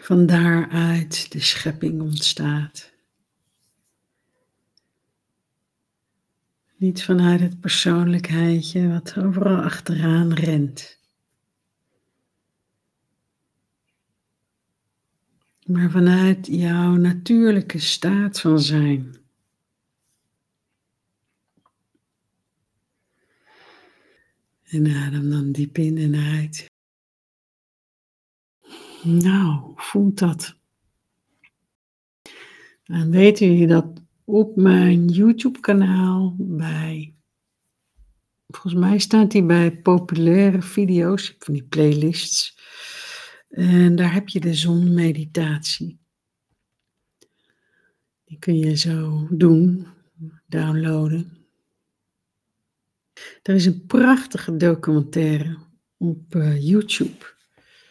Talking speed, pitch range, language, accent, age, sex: 70 wpm, 155-185 Hz, Dutch, Dutch, 60-79, female